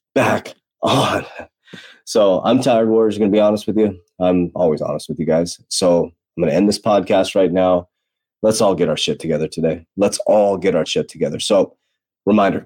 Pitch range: 95-120 Hz